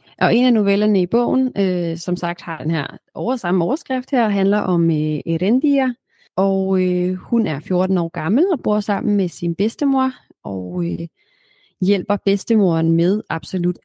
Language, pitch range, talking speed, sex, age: Danish, 170-215 Hz, 165 wpm, female, 30-49